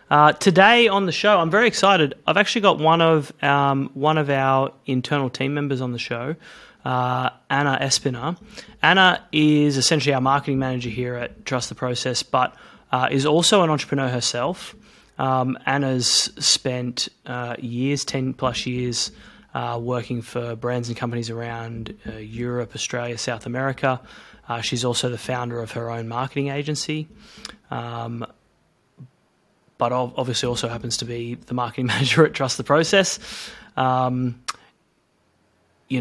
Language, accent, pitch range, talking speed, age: English, Australian, 115-140 Hz, 150 wpm, 20-39